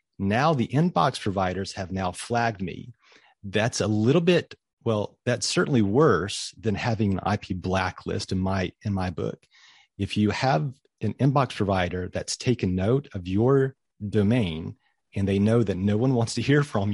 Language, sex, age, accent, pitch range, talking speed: English, male, 40-59, American, 95-125 Hz, 170 wpm